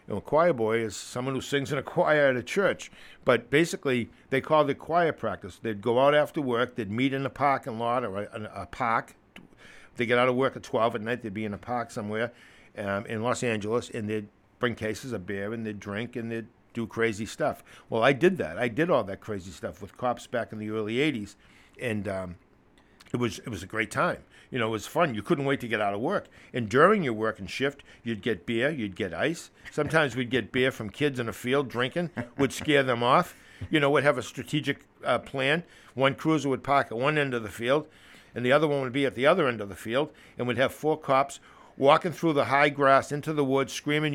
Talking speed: 245 wpm